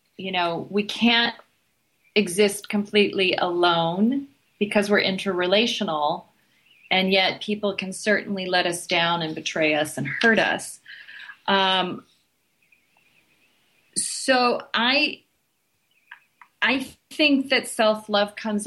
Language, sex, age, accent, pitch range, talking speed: English, female, 30-49, American, 170-205 Hz, 105 wpm